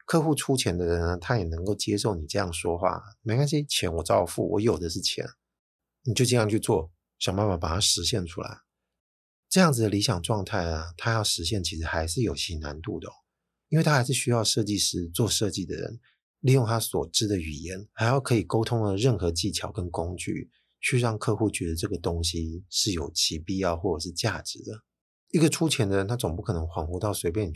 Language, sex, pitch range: Chinese, male, 85-115 Hz